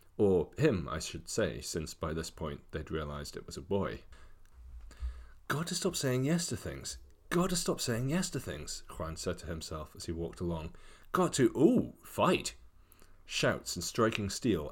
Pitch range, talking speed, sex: 85-110 Hz, 185 wpm, male